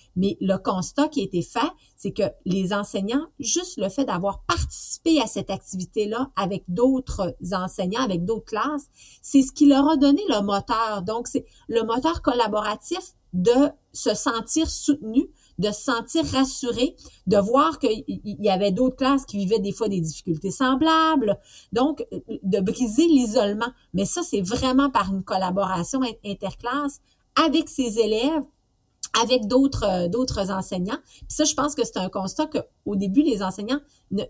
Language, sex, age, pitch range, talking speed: French, female, 40-59, 190-260 Hz, 160 wpm